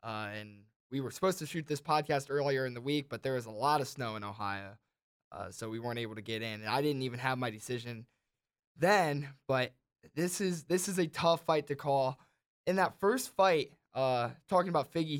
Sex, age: male, 20-39